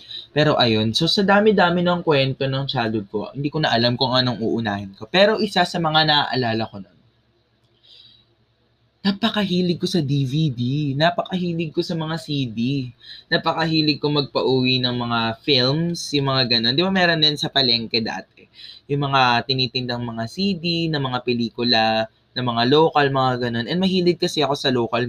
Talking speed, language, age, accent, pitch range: 165 wpm, Filipino, 20-39, native, 115-160 Hz